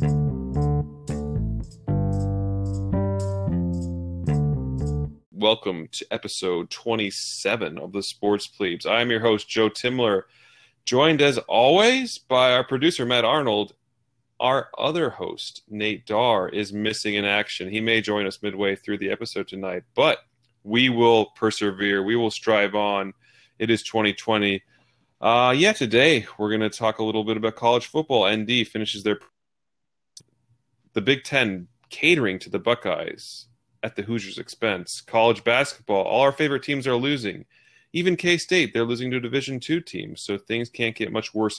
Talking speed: 145 wpm